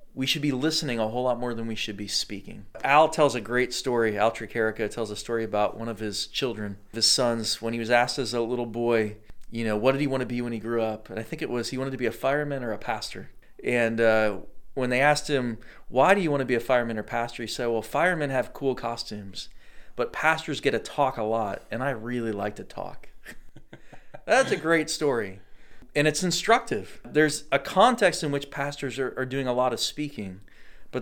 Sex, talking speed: male, 235 wpm